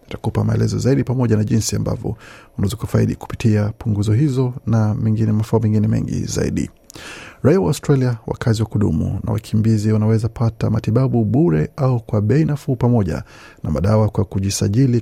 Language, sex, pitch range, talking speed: Swahili, male, 105-130 Hz, 155 wpm